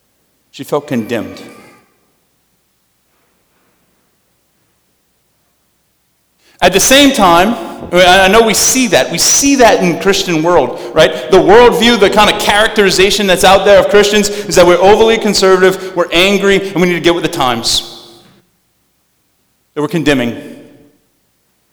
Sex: male